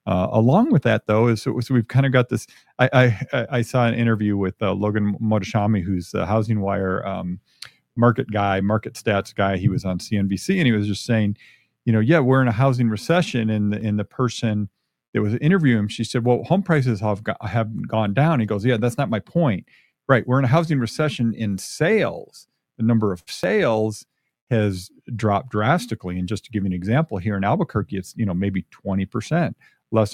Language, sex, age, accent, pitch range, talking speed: English, male, 40-59, American, 100-125 Hz, 215 wpm